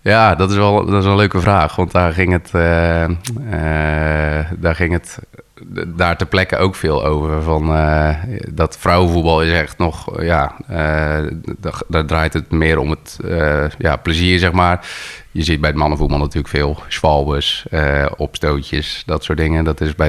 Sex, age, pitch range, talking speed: male, 30-49, 75-85 Hz, 165 wpm